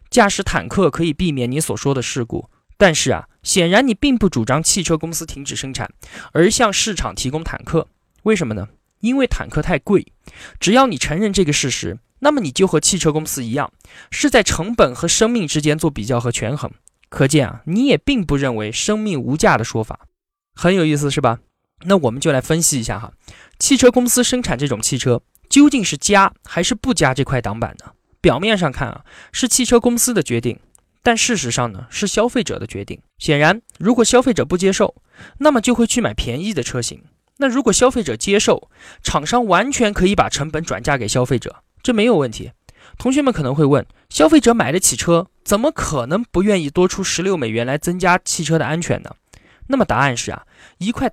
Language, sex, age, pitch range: Chinese, male, 20-39, 135-225 Hz